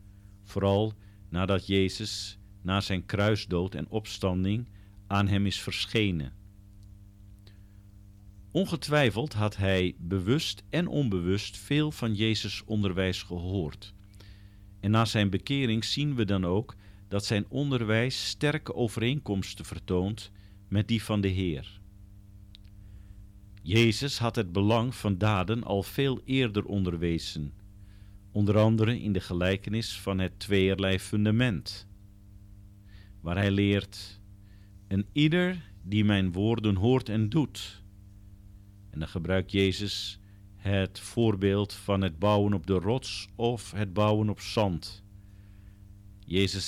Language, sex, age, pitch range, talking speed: Dutch, male, 50-69, 100-110 Hz, 115 wpm